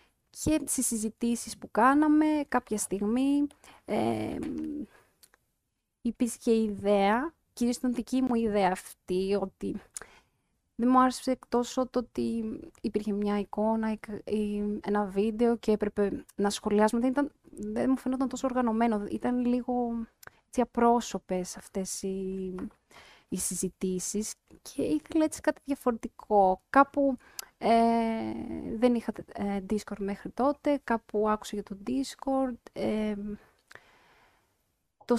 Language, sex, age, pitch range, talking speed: Greek, female, 20-39, 200-255 Hz, 110 wpm